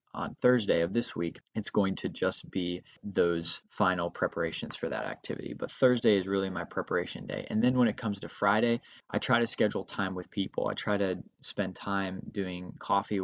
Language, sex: English, male